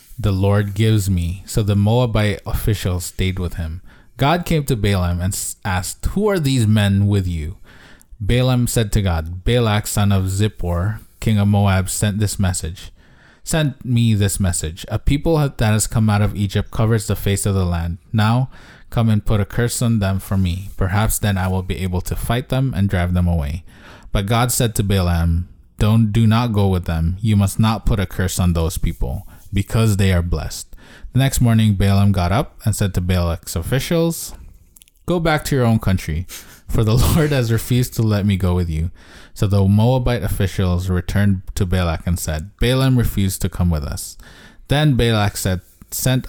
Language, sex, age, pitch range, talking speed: English, male, 20-39, 90-115 Hz, 195 wpm